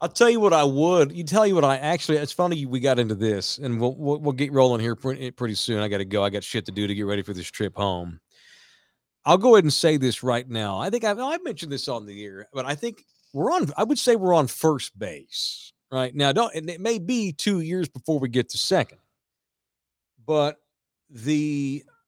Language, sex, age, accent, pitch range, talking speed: English, male, 50-69, American, 110-150 Hz, 240 wpm